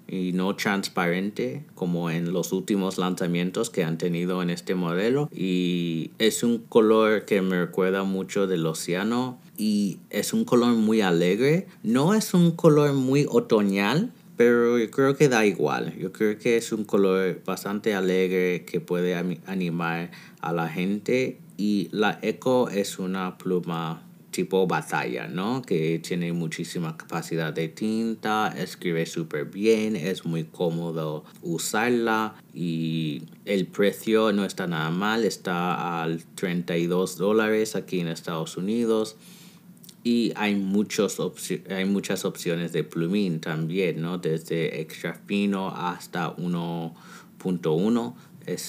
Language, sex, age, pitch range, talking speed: Spanish, male, 30-49, 85-110 Hz, 135 wpm